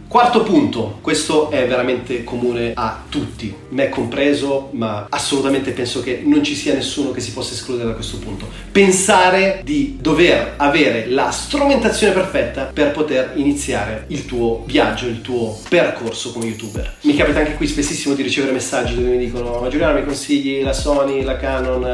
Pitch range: 120-140 Hz